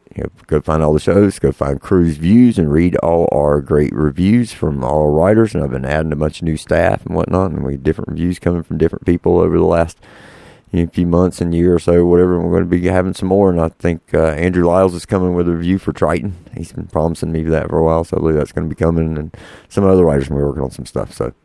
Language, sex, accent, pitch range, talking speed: English, male, American, 80-100 Hz, 280 wpm